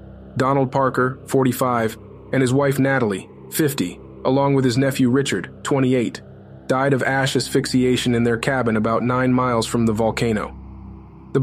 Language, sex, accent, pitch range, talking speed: English, male, American, 110-135 Hz, 145 wpm